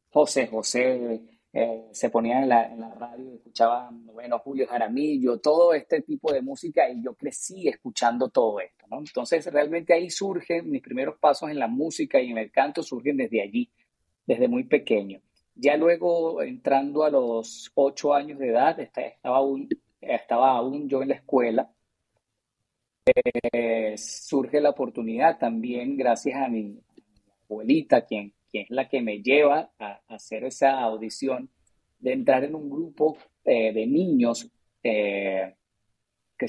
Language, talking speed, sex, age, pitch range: Spanish, 150 wpm, male, 30-49, 110-140 Hz